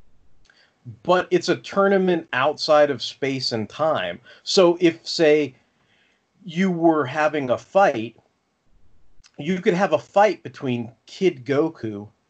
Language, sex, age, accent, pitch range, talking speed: English, male, 40-59, American, 125-170 Hz, 120 wpm